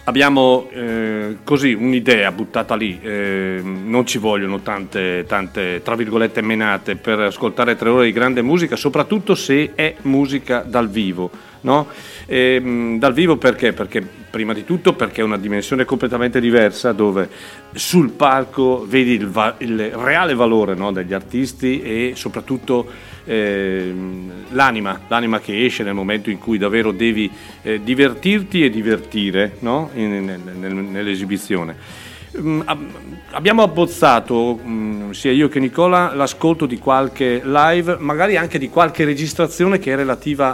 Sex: male